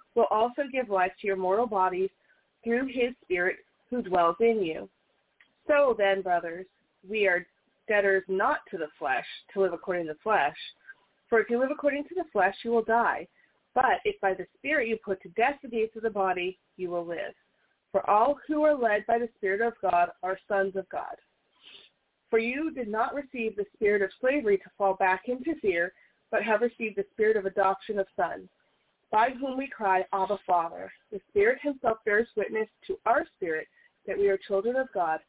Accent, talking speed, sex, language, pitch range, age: American, 195 wpm, female, English, 190-255 Hz, 30-49